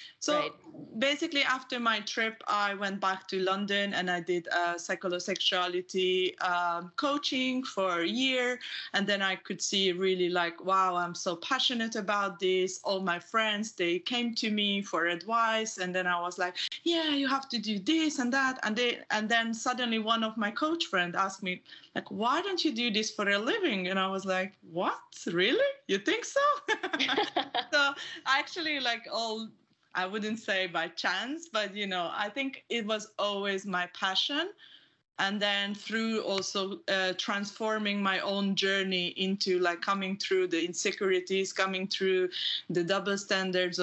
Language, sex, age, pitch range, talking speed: English, female, 20-39, 185-230 Hz, 170 wpm